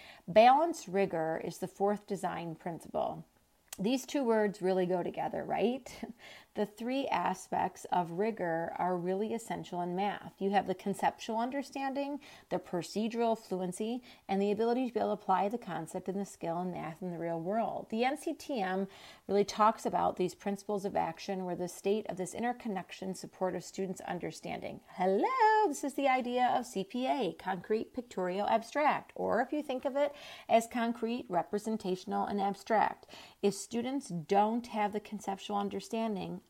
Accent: American